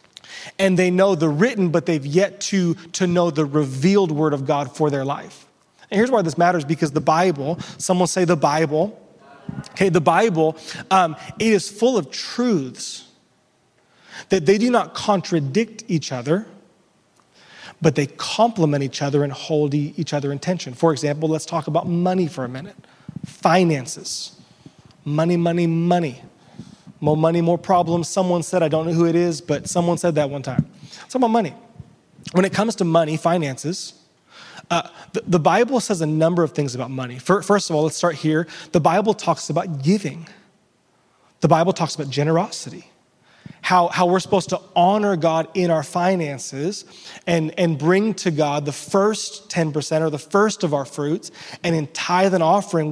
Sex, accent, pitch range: male, American, 155-185 Hz